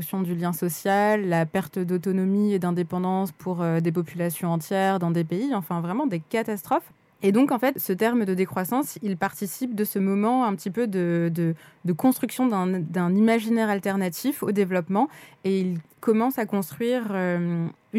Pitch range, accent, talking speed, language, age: 185-230 Hz, French, 175 wpm, French, 20-39